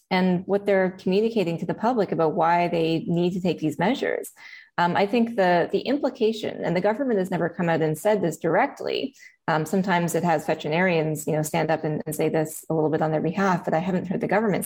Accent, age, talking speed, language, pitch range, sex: American, 20-39, 235 wpm, English, 170-215 Hz, female